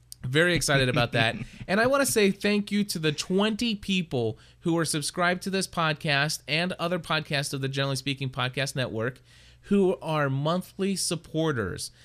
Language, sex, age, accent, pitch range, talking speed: English, male, 30-49, American, 130-170 Hz, 170 wpm